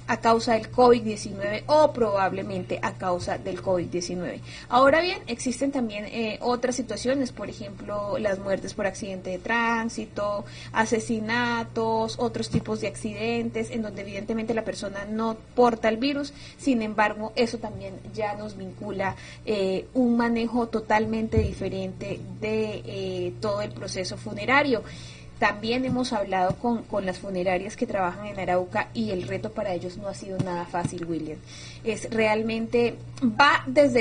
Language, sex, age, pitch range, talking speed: Spanish, female, 20-39, 200-240 Hz, 145 wpm